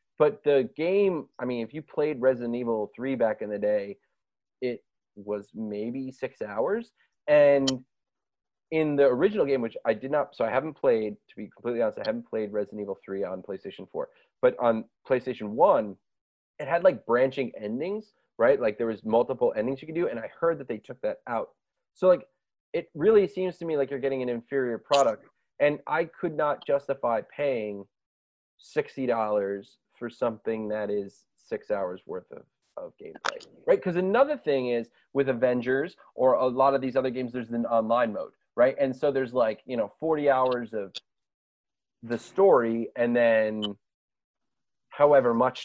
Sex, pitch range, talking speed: male, 110-145 Hz, 180 wpm